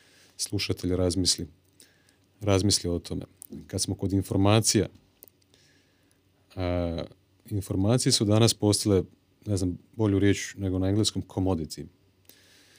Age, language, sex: 40-59, Croatian, male